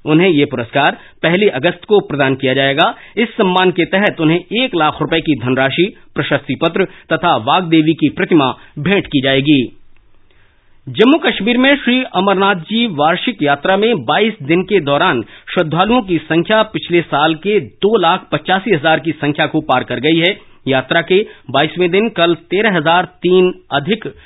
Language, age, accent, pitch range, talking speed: Hindi, 40-59, native, 145-195 Hz, 160 wpm